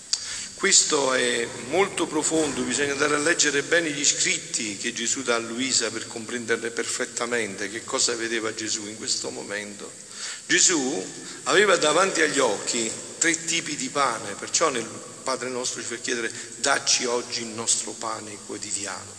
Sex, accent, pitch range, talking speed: male, native, 115-160 Hz, 150 wpm